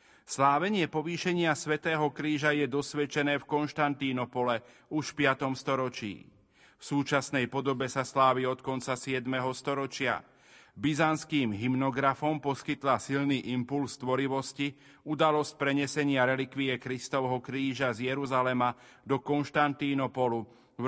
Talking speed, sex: 105 wpm, male